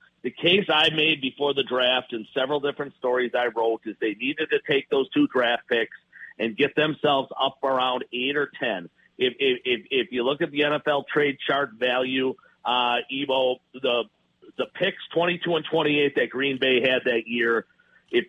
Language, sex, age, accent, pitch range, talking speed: English, male, 50-69, American, 125-145 Hz, 185 wpm